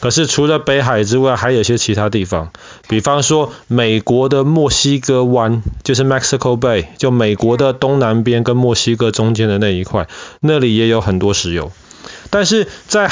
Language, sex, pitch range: Chinese, male, 110-135 Hz